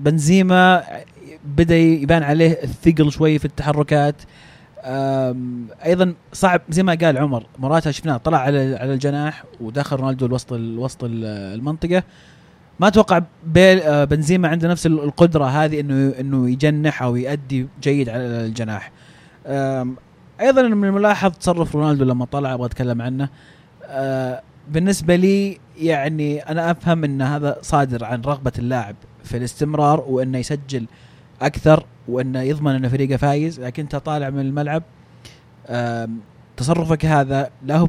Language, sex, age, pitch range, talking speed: Arabic, male, 20-39, 130-160 Hz, 125 wpm